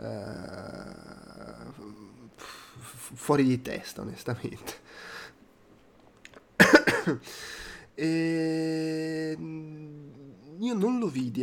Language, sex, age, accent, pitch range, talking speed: Italian, male, 20-39, native, 115-155 Hz, 55 wpm